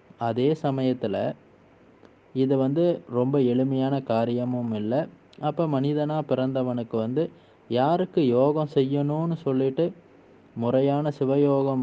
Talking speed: 90 wpm